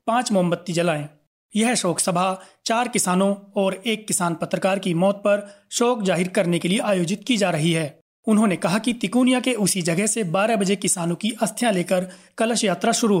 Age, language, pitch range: 30-49, Hindi, 180-220 Hz